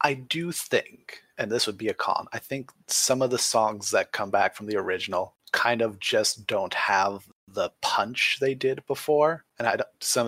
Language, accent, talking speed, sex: English, American, 205 wpm, male